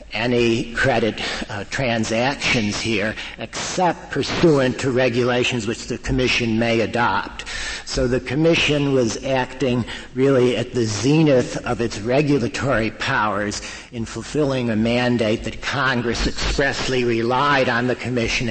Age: 60-79